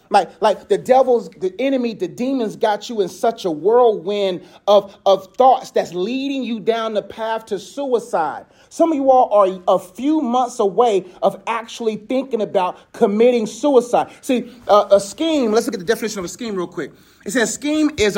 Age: 30-49